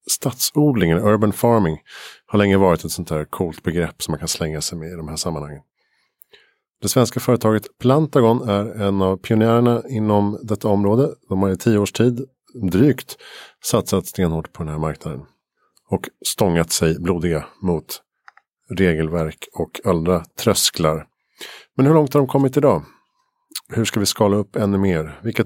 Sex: male